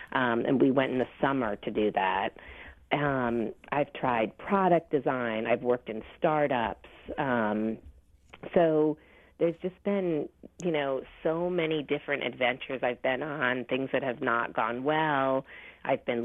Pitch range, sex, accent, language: 125-165 Hz, female, American, English